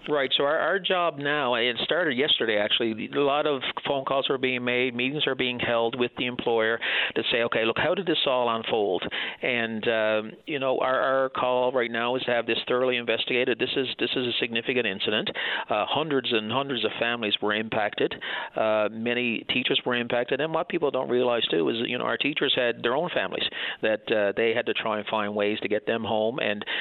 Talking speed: 220 wpm